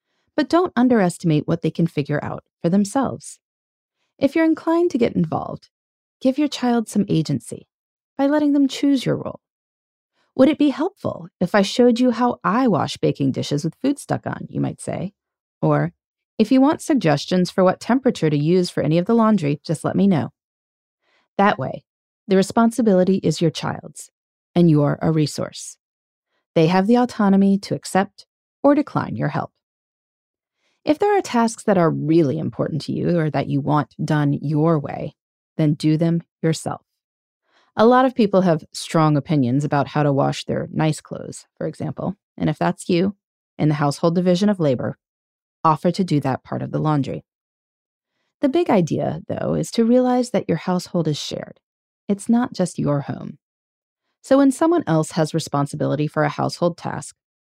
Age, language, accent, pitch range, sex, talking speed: 30-49, English, American, 155-245 Hz, female, 180 wpm